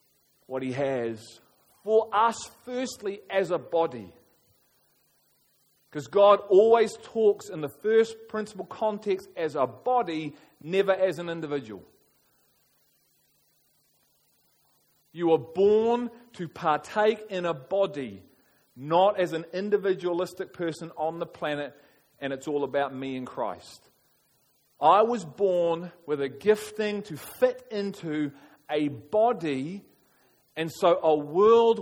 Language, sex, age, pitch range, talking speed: English, male, 40-59, 160-225 Hz, 120 wpm